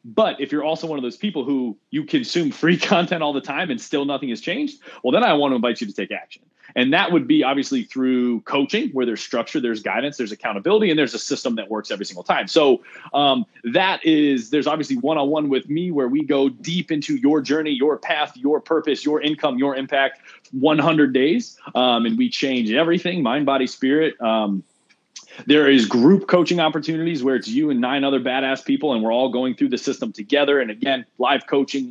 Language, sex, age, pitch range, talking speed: English, male, 30-49, 130-170 Hz, 220 wpm